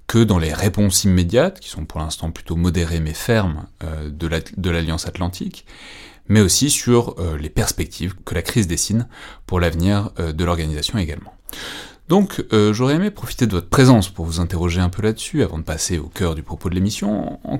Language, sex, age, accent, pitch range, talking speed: French, male, 30-49, French, 85-115 Hz, 185 wpm